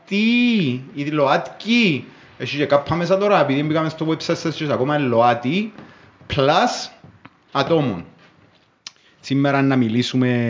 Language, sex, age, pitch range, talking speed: Greek, male, 30-49, 105-145 Hz, 125 wpm